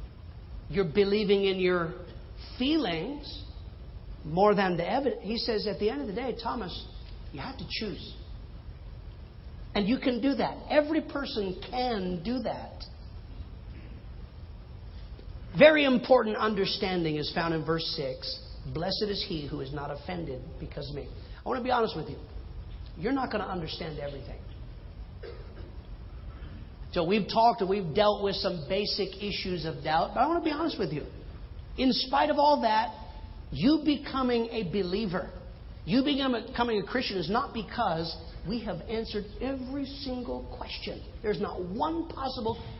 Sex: male